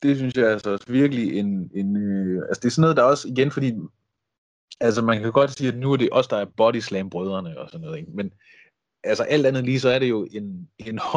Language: Danish